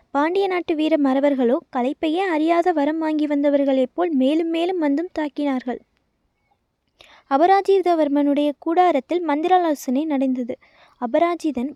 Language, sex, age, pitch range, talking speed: Tamil, female, 20-39, 275-340 Hz, 95 wpm